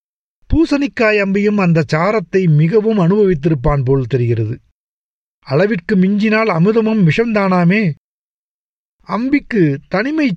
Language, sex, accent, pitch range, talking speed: Tamil, male, native, 160-215 Hz, 80 wpm